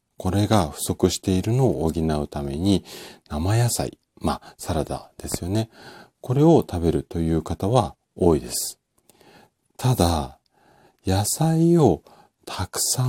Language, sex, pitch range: Japanese, male, 75-115 Hz